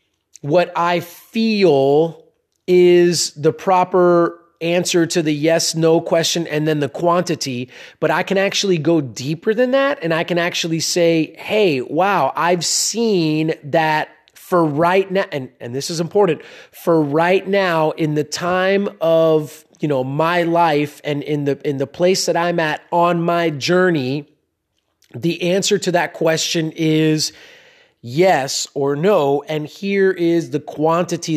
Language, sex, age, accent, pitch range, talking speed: English, male, 30-49, American, 150-180 Hz, 150 wpm